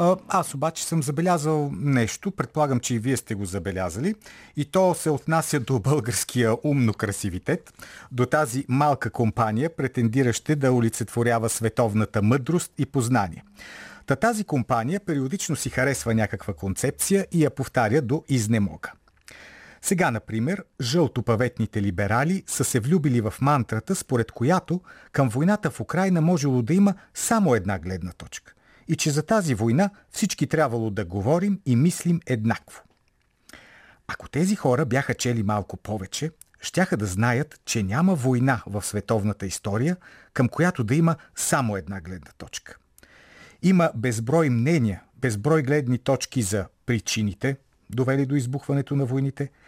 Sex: male